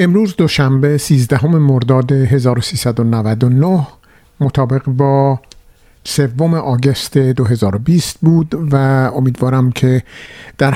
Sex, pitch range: male, 125-155 Hz